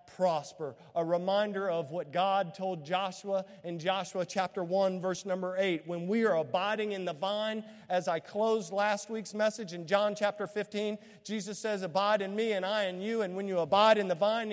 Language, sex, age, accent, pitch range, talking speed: English, male, 50-69, American, 175-230 Hz, 200 wpm